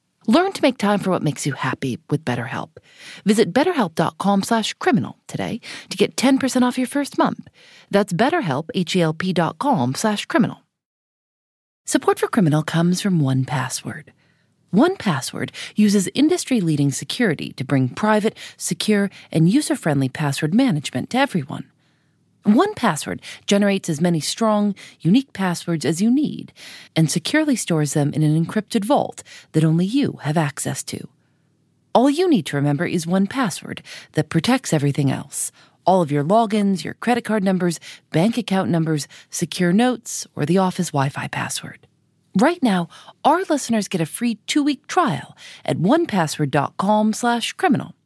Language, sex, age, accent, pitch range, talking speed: English, female, 40-59, American, 155-230 Hz, 140 wpm